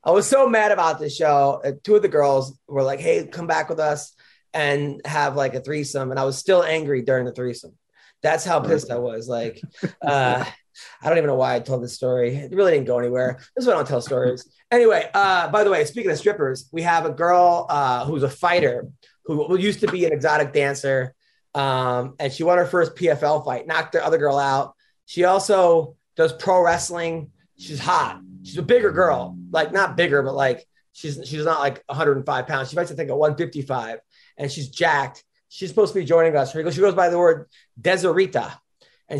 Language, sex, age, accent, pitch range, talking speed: English, male, 30-49, American, 135-180 Hz, 225 wpm